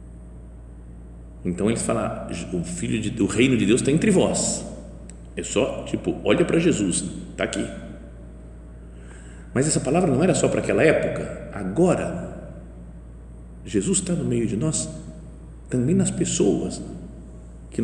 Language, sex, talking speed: Portuguese, male, 140 wpm